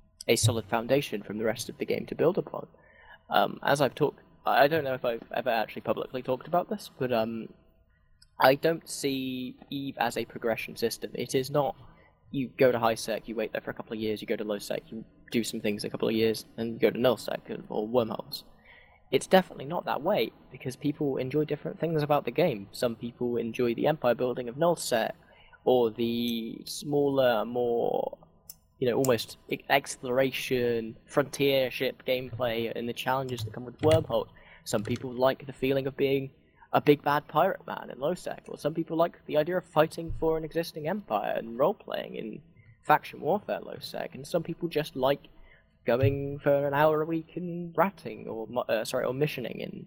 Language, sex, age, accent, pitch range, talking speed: English, male, 10-29, British, 115-150 Hz, 195 wpm